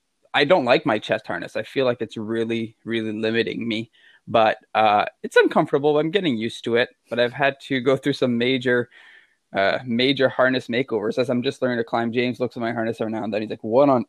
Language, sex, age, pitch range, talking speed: English, male, 20-39, 115-145 Hz, 230 wpm